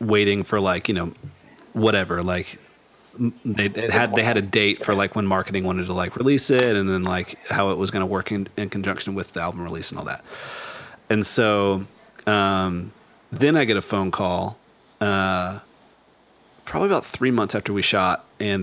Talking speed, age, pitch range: 185 wpm, 30-49, 95-115 Hz